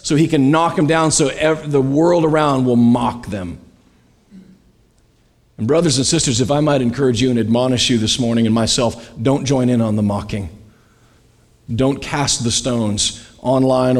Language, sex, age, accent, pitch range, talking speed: English, male, 40-59, American, 110-140 Hz, 170 wpm